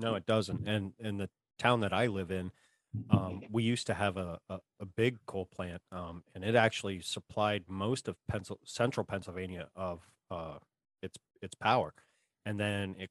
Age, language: 30-49, English